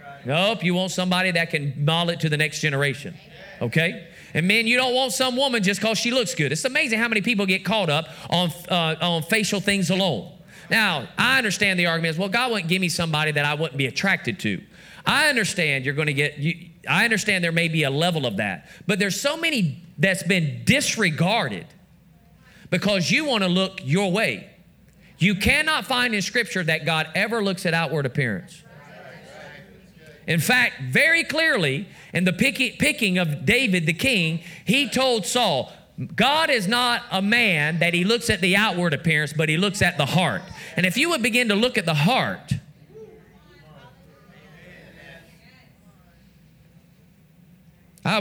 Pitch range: 160-205 Hz